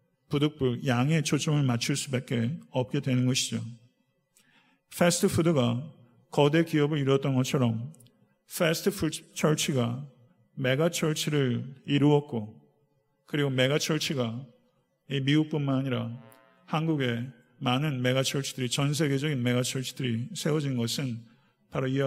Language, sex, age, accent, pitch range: Korean, male, 50-69, native, 125-155 Hz